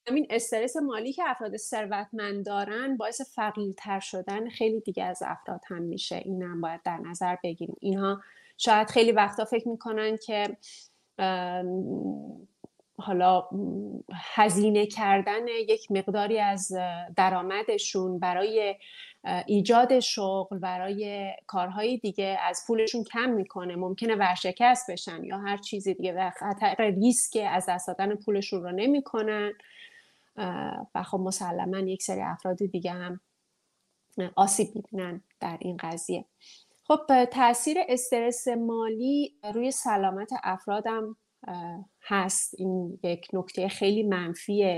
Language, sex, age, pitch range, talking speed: Persian, female, 30-49, 185-225 Hz, 115 wpm